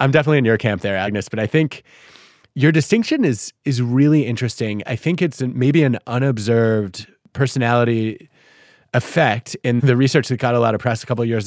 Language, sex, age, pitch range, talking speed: English, male, 20-39, 105-130 Hz, 195 wpm